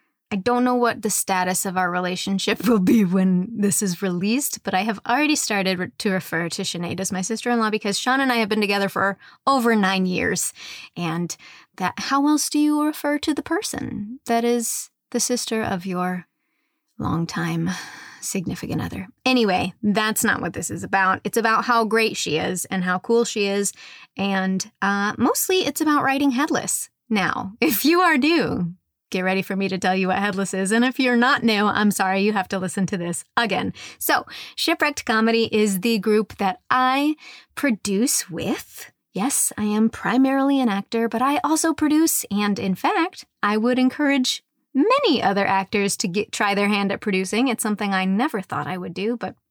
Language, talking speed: English, 190 wpm